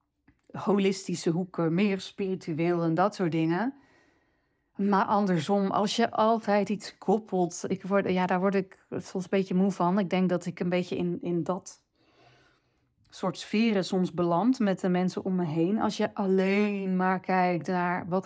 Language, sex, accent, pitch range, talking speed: Dutch, female, Dutch, 175-205 Hz, 170 wpm